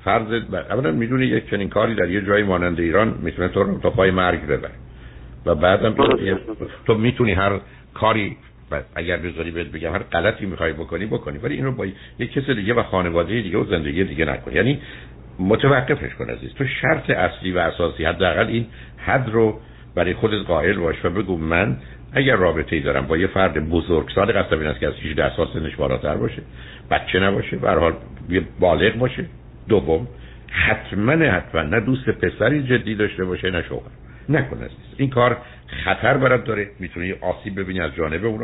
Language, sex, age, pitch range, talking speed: Persian, male, 60-79, 80-110 Hz, 180 wpm